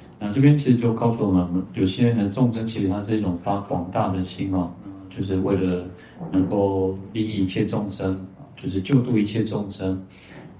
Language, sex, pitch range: Chinese, male, 95-115 Hz